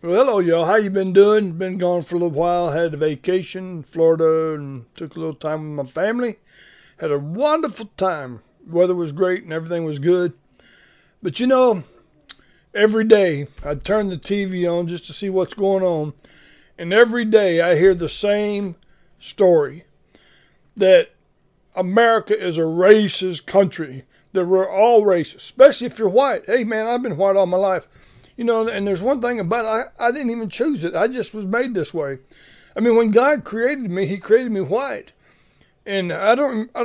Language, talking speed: English, 190 wpm